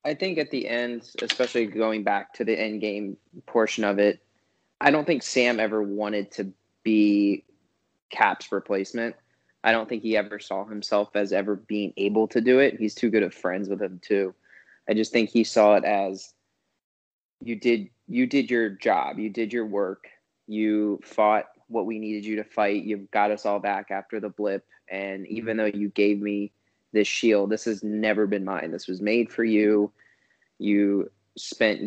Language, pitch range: English, 100-115 Hz